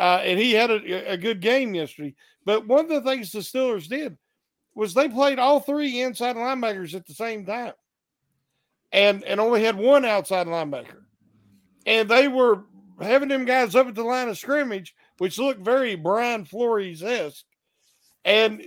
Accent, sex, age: American, male, 50-69